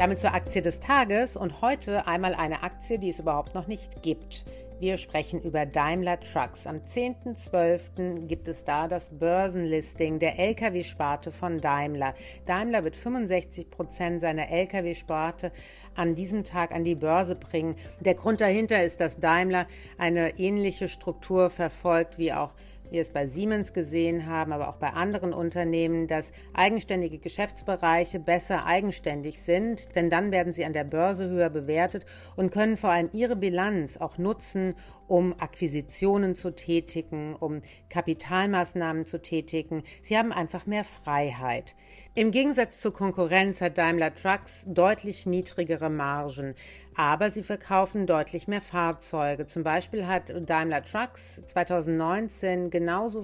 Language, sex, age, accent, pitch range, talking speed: German, female, 50-69, German, 160-190 Hz, 140 wpm